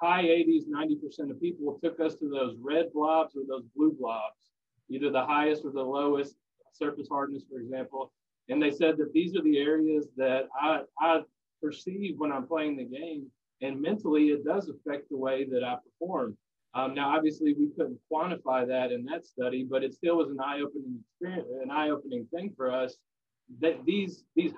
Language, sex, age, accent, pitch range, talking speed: English, male, 30-49, American, 130-160 Hz, 195 wpm